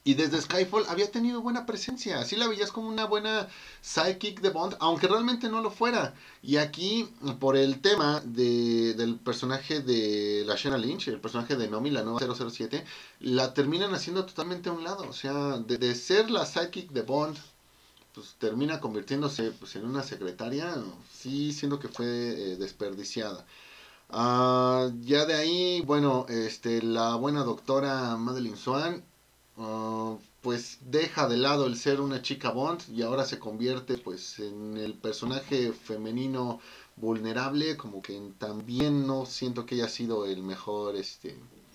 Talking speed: 160 wpm